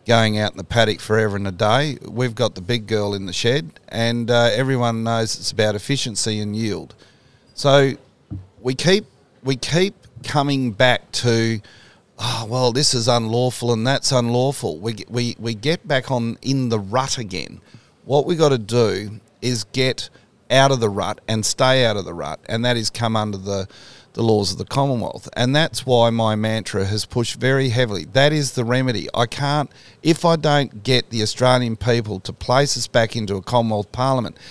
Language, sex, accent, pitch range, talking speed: English, male, Australian, 110-130 Hz, 190 wpm